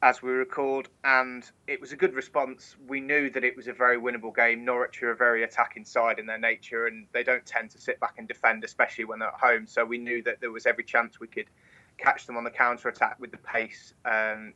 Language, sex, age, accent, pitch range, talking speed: English, male, 20-39, British, 115-125 Hz, 245 wpm